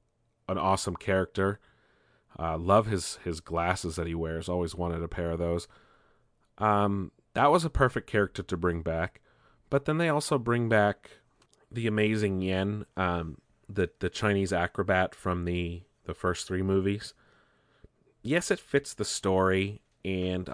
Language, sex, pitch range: English, male, 85-105 Hz